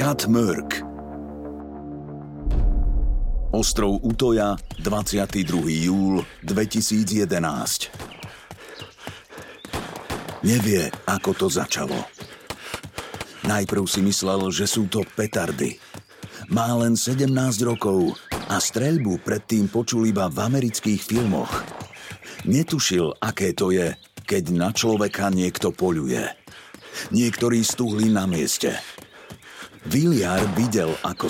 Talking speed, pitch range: 90 wpm, 95-115 Hz